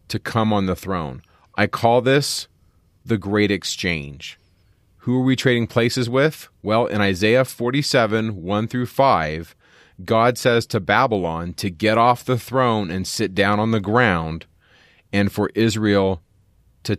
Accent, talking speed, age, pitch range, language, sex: American, 150 wpm, 30-49, 95-120 Hz, English, male